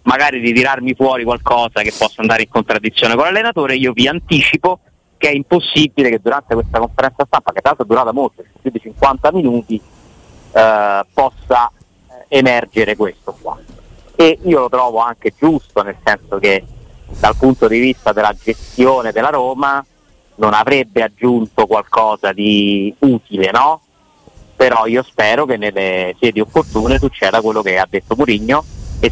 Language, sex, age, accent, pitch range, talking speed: Italian, male, 30-49, native, 105-130 Hz, 155 wpm